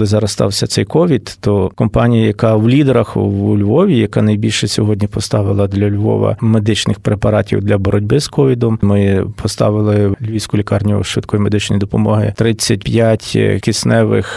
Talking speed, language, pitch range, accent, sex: 140 wpm, Ukrainian, 105-125 Hz, native, male